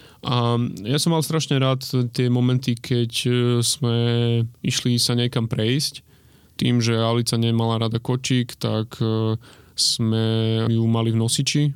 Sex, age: male, 20-39